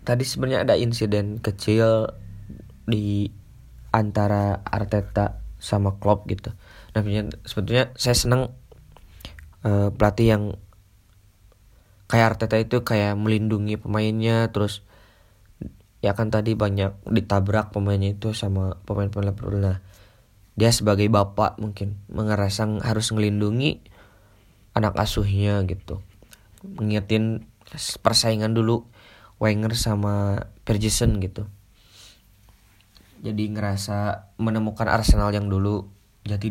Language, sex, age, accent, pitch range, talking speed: Indonesian, male, 20-39, native, 100-110 Hz, 95 wpm